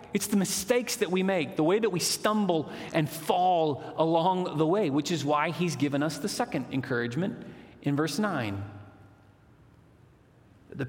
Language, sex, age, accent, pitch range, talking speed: English, male, 40-59, American, 125-175 Hz, 160 wpm